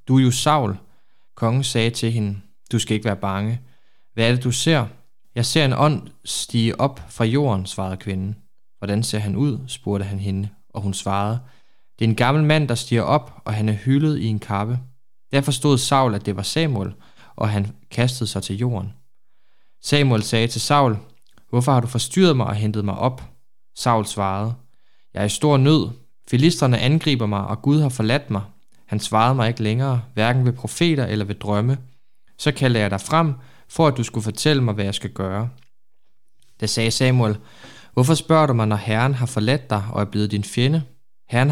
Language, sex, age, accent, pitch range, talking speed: Danish, male, 20-39, native, 105-135 Hz, 200 wpm